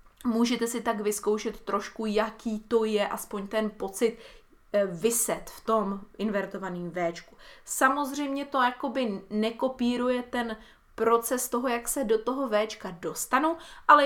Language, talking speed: Czech, 130 wpm